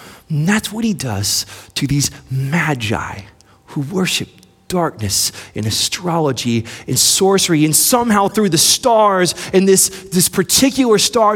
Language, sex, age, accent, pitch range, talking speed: English, male, 30-49, American, 130-200 Hz, 130 wpm